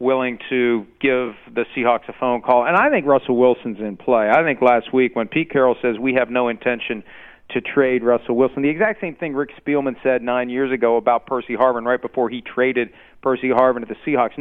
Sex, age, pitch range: male, 40-59, 125-145 Hz